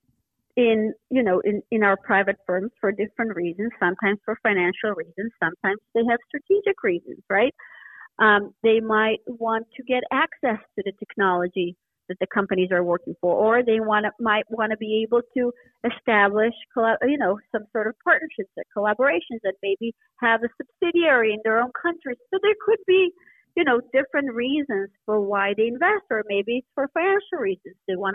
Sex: female